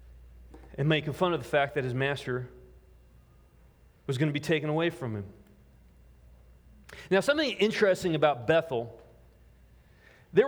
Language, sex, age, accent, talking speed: English, male, 30-49, American, 130 wpm